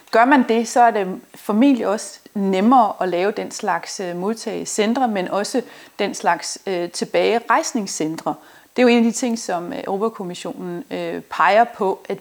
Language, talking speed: Danish, 160 wpm